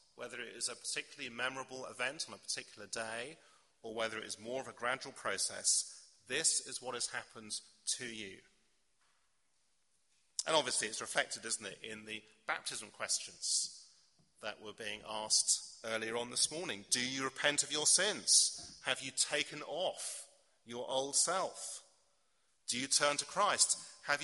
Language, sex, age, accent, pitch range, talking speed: English, male, 40-59, British, 110-130 Hz, 160 wpm